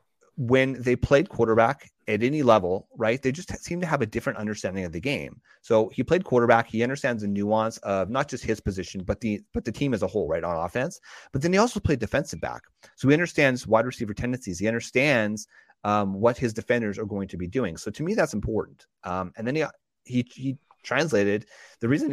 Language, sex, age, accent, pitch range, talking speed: English, male, 30-49, American, 100-130 Hz, 220 wpm